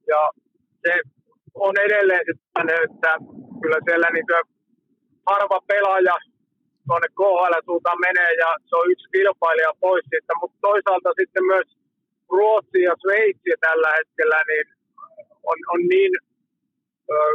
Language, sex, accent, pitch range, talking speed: Finnish, male, native, 160-200 Hz, 120 wpm